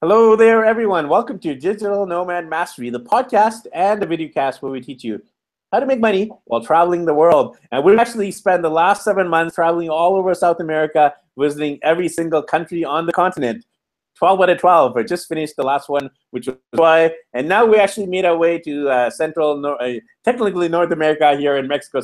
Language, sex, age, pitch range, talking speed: English, male, 30-49, 125-175 Hz, 210 wpm